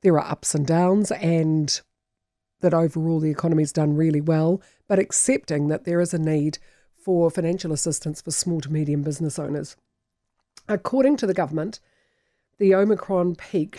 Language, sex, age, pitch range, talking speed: English, female, 50-69, 155-185 Hz, 155 wpm